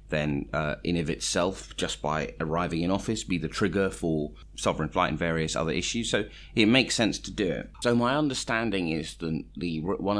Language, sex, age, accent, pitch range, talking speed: English, male, 30-49, British, 75-90 Hz, 200 wpm